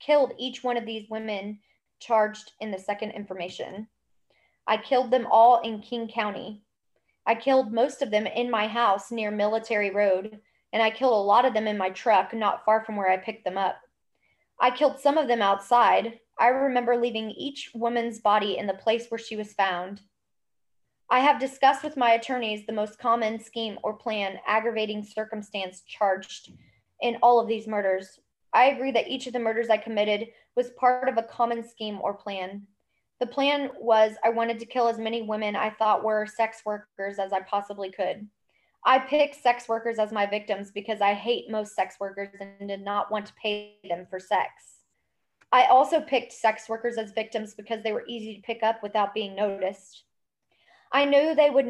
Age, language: 20-39, English